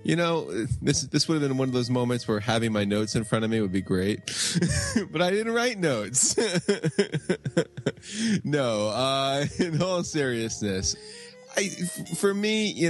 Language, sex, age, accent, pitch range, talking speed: English, male, 20-39, American, 95-130 Hz, 165 wpm